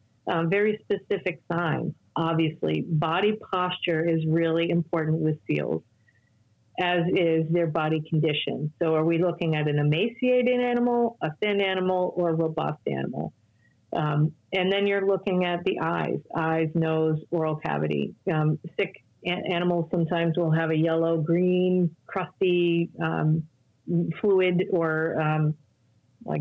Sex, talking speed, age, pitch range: female, 135 wpm, 40-59, 155-180 Hz